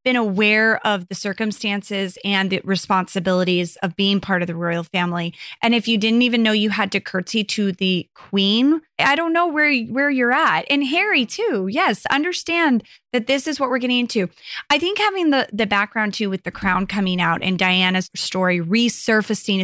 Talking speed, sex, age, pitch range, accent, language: 195 wpm, female, 20-39, 190-245 Hz, American, English